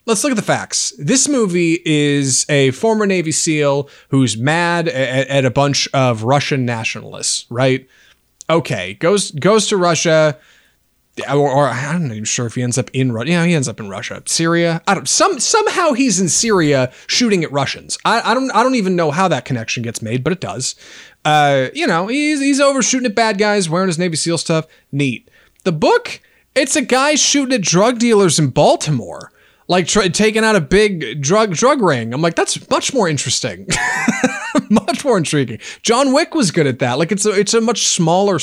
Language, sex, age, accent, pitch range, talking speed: English, male, 30-49, American, 135-195 Hz, 200 wpm